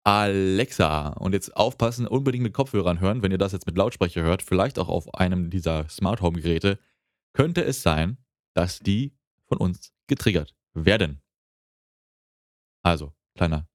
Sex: male